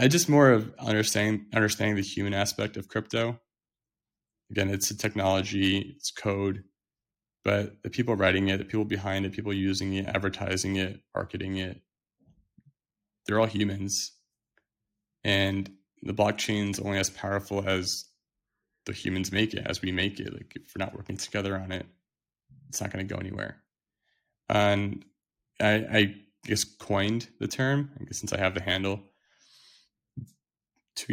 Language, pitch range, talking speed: English, 95-110 Hz, 155 wpm